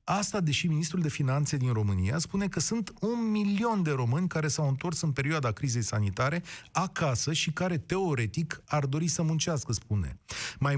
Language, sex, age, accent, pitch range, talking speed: Romanian, male, 30-49, native, 135-175 Hz, 175 wpm